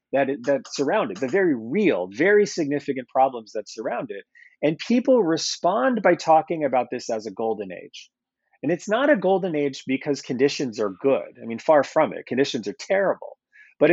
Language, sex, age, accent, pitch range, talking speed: English, male, 30-49, American, 135-190 Hz, 185 wpm